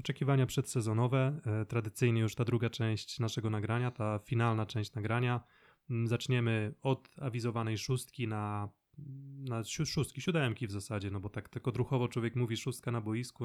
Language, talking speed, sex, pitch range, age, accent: Polish, 150 wpm, male, 110-130 Hz, 20-39, native